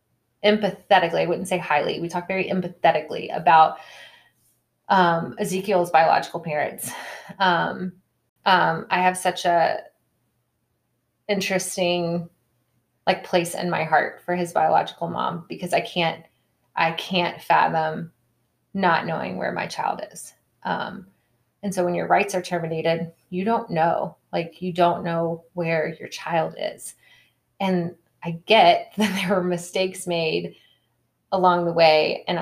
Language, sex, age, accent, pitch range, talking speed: English, female, 20-39, American, 160-185 Hz, 135 wpm